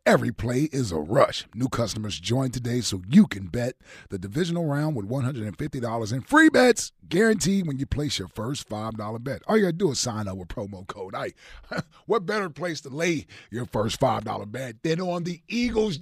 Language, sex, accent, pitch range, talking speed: English, male, American, 120-195 Hz, 220 wpm